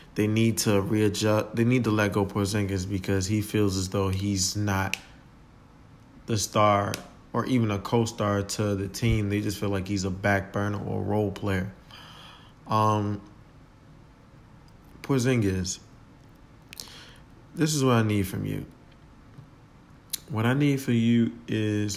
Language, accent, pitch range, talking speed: English, American, 100-125 Hz, 145 wpm